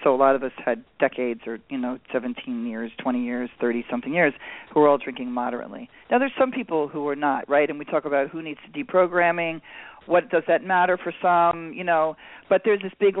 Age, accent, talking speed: 40-59, American, 220 wpm